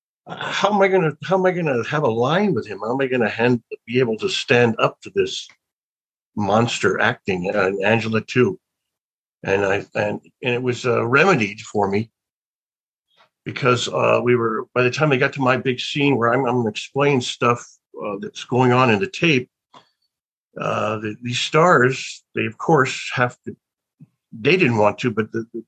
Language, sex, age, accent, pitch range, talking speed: English, male, 60-79, American, 110-150 Hz, 190 wpm